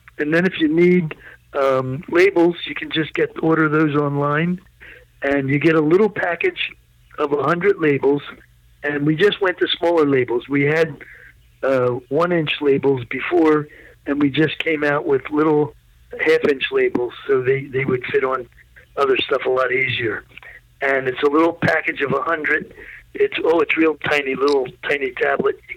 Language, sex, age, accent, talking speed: English, male, 50-69, American, 170 wpm